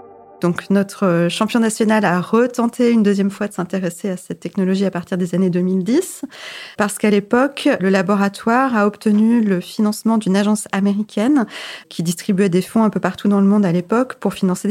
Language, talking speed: French, 185 wpm